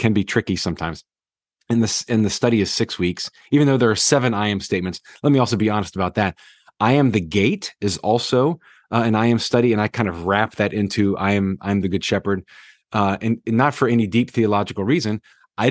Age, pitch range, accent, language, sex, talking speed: 30-49, 100-125 Hz, American, English, male, 235 wpm